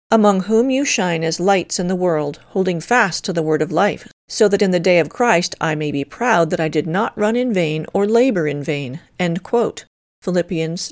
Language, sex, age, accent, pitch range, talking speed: English, female, 40-59, American, 165-230 Hz, 225 wpm